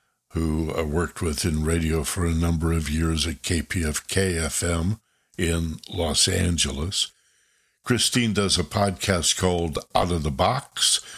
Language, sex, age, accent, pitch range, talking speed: English, male, 60-79, American, 80-95 Hz, 135 wpm